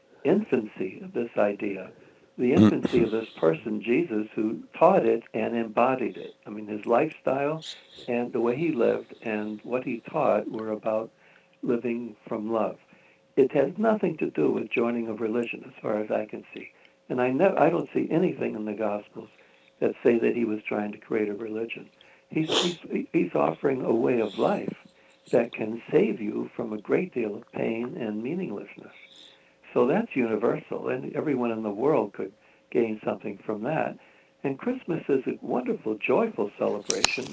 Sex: male